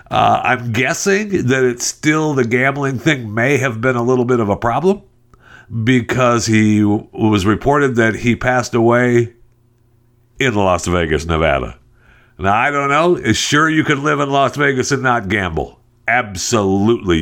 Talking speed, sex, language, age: 160 wpm, male, English, 60-79